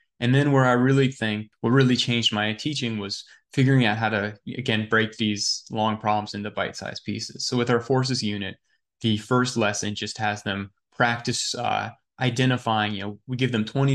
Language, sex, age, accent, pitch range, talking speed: English, male, 20-39, American, 105-125 Hz, 195 wpm